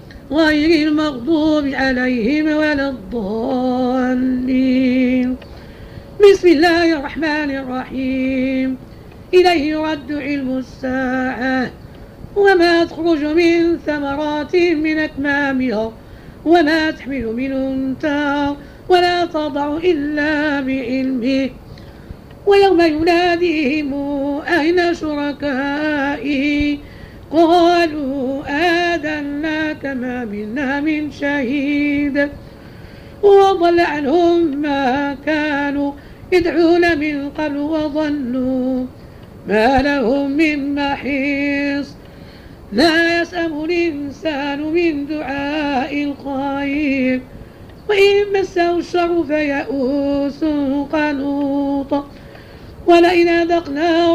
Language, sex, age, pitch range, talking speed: Arabic, female, 50-69, 275-330 Hz, 70 wpm